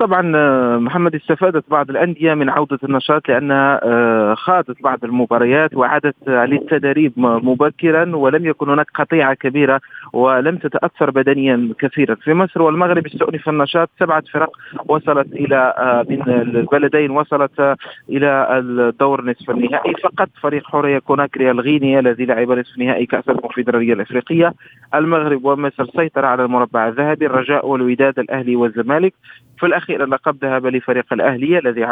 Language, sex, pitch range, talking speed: Arabic, male, 125-155 Hz, 130 wpm